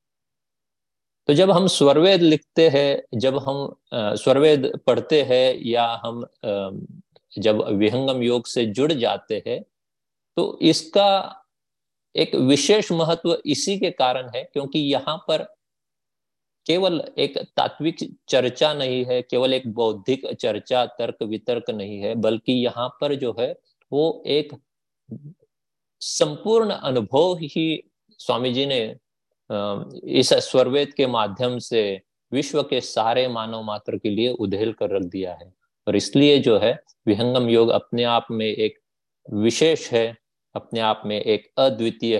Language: Hindi